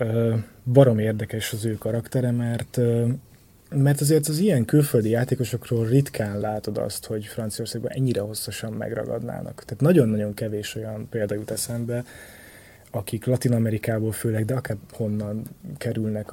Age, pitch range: 20-39, 110-125 Hz